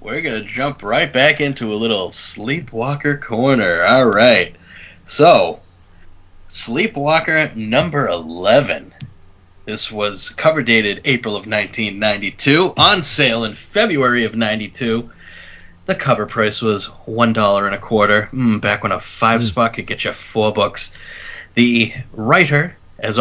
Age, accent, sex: 30-49, American, male